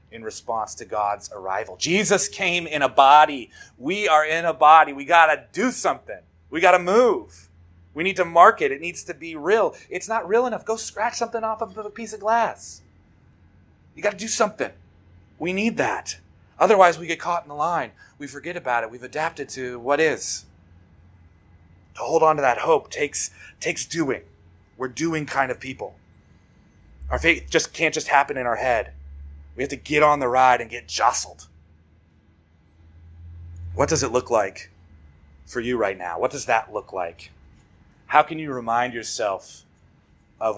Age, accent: 30-49, American